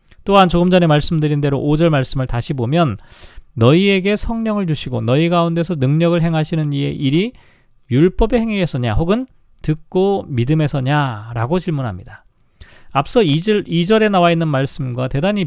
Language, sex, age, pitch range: Korean, male, 40-59, 135-190 Hz